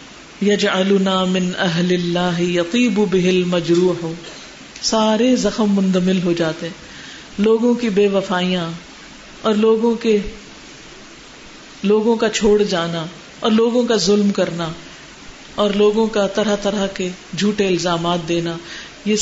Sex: female